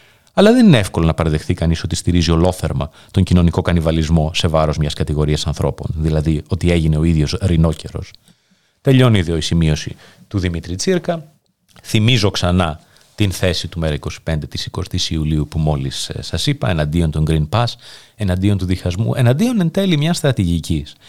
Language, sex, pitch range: Greek, male, 85-135 Hz